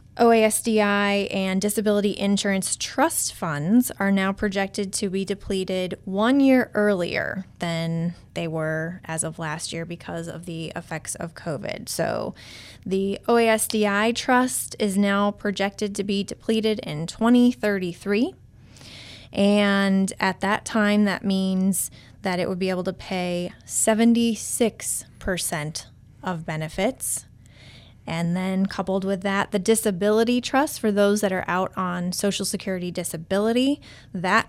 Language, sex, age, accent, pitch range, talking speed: English, female, 20-39, American, 170-210 Hz, 130 wpm